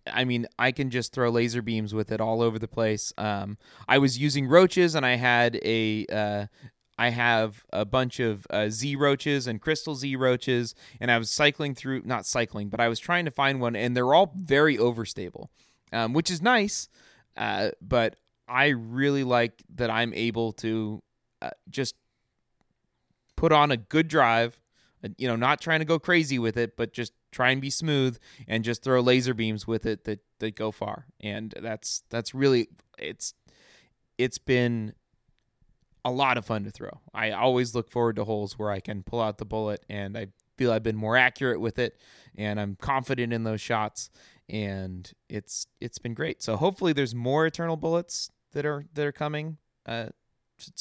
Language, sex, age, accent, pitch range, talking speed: English, male, 20-39, American, 110-135 Hz, 190 wpm